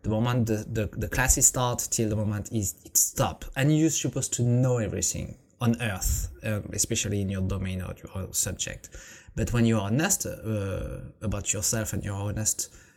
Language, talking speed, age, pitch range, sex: English, 190 wpm, 20-39, 105-135 Hz, male